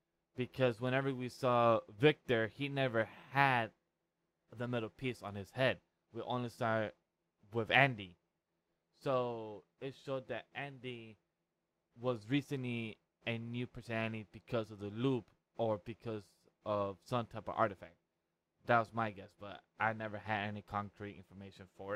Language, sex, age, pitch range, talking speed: English, male, 20-39, 100-120 Hz, 140 wpm